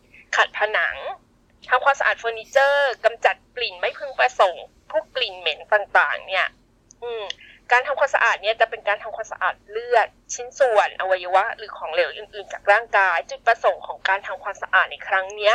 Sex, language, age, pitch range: female, Thai, 20-39, 190-275 Hz